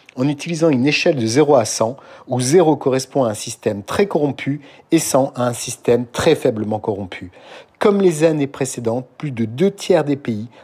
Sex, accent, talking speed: male, French, 190 wpm